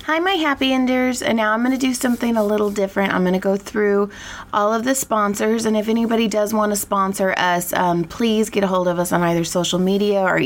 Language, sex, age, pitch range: English, female, 20-39, 170-200 Hz